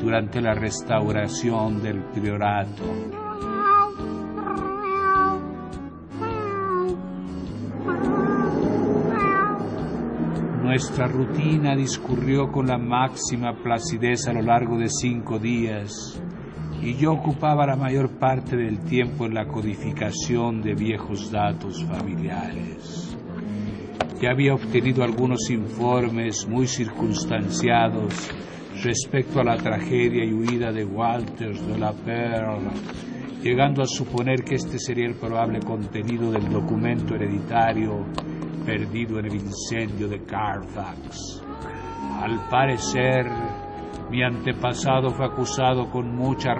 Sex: male